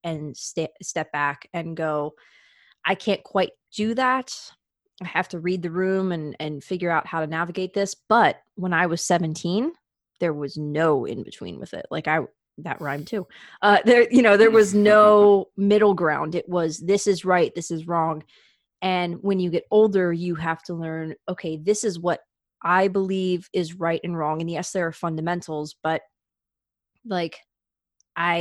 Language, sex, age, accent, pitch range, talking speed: English, female, 20-39, American, 160-185 Hz, 180 wpm